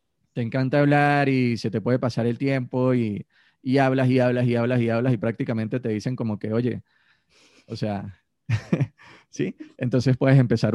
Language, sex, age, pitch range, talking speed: Spanish, male, 20-39, 125-150 Hz, 185 wpm